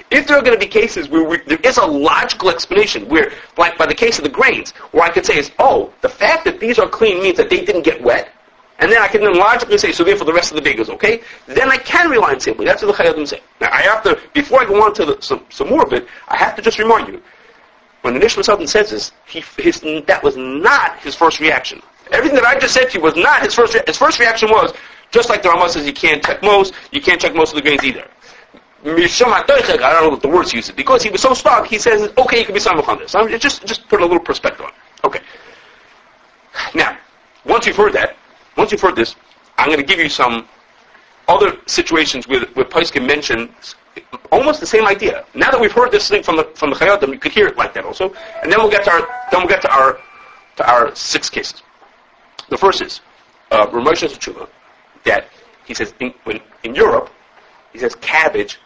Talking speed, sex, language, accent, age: 245 wpm, male, English, American, 40-59